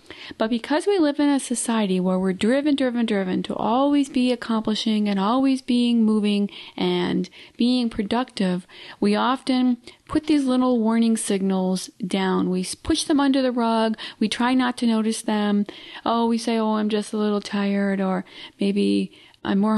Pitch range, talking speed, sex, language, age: 195-255 Hz, 170 wpm, female, English, 40-59